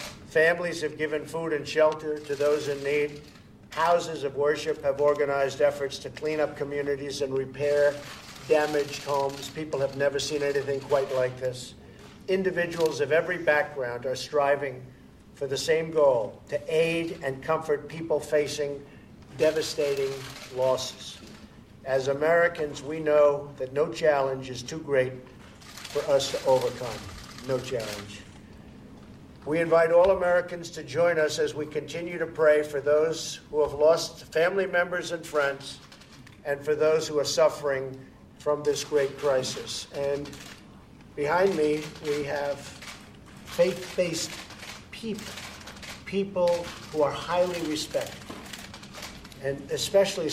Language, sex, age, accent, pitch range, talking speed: English, male, 50-69, American, 140-160 Hz, 130 wpm